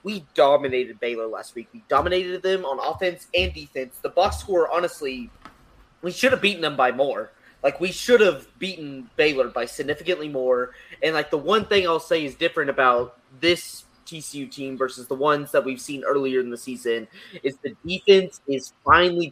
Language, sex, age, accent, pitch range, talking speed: English, male, 20-39, American, 130-170 Hz, 185 wpm